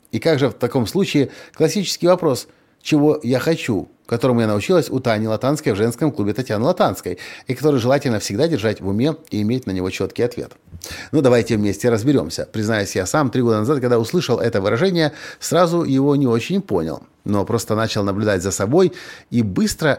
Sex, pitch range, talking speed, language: male, 110-150 Hz, 185 wpm, Russian